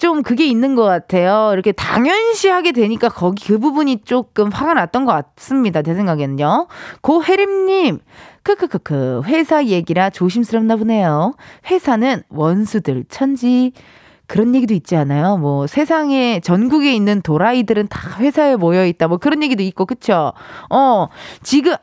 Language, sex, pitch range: Korean, female, 200-305 Hz